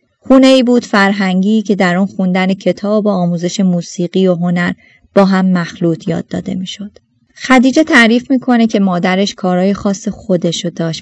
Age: 20-39